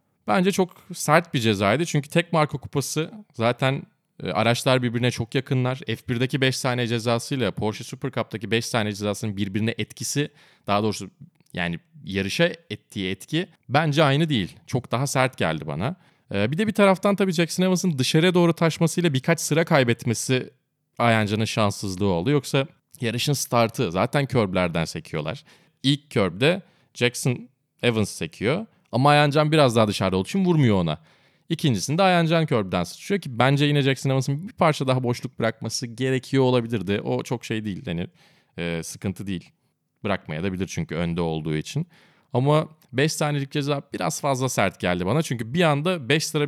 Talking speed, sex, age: 155 wpm, male, 30-49